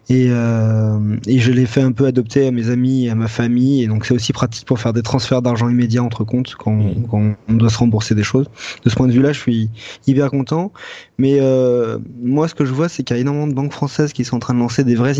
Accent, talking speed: French, 275 wpm